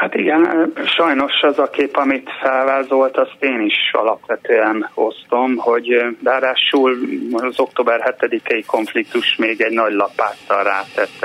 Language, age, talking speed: Hungarian, 30-49, 130 wpm